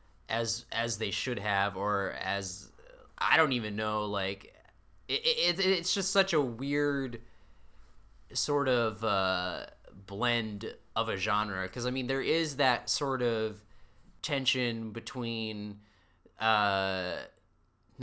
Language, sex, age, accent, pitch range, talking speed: English, male, 20-39, American, 95-125 Hz, 125 wpm